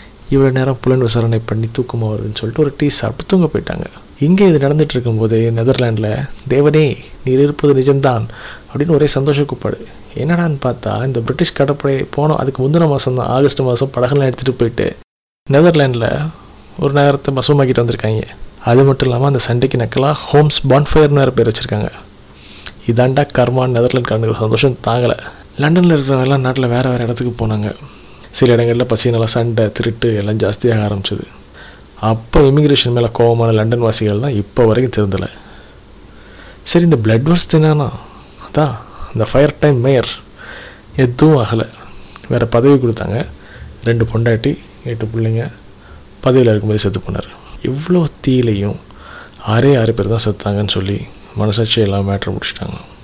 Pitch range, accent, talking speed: 110-140 Hz, native, 135 wpm